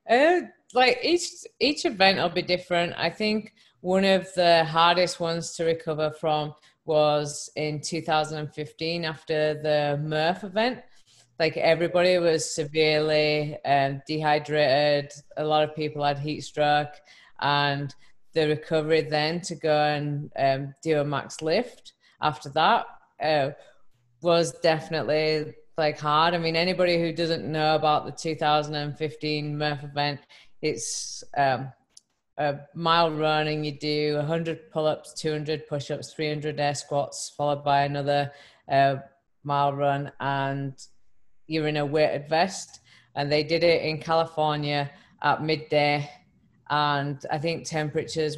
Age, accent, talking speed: 20-39, British, 130 wpm